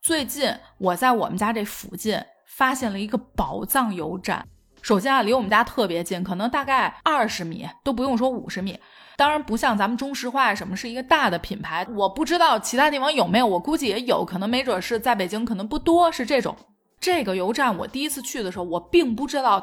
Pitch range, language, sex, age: 215-295 Hz, Chinese, female, 20-39